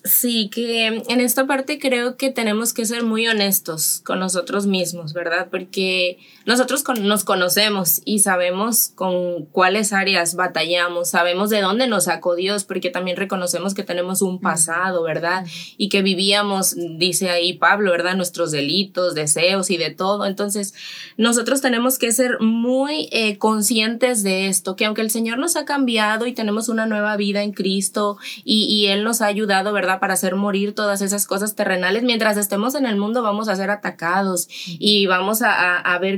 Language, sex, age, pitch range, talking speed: English, female, 20-39, 190-240 Hz, 175 wpm